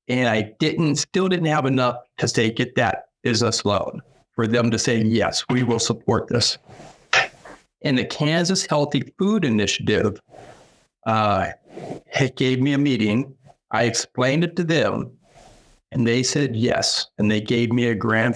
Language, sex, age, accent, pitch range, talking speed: English, male, 50-69, American, 115-135 Hz, 160 wpm